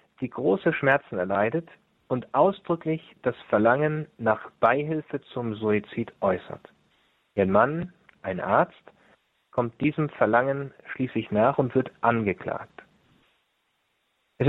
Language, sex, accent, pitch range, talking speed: German, male, German, 110-145 Hz, 110 wpm